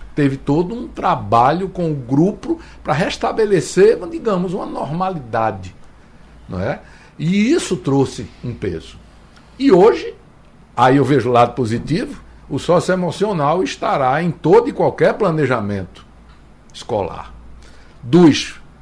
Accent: Brazilian